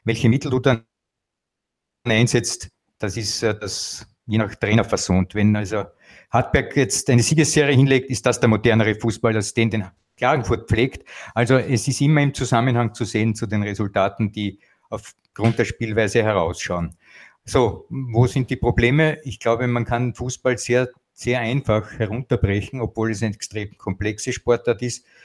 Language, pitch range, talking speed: German, 105-130 Hz, 155 wpm